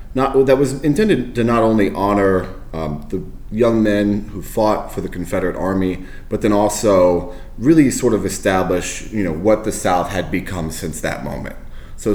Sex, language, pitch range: male, English, 80-110 Hz